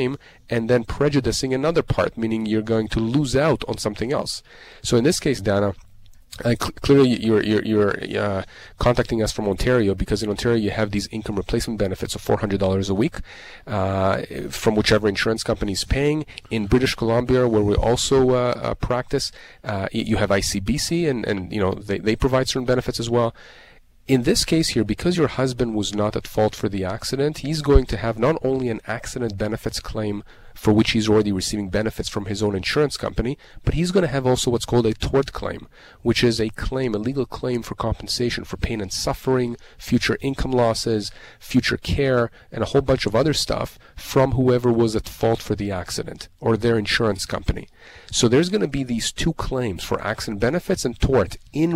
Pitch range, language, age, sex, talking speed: 105-130 Hz, English, 30-49, male, 195 wpm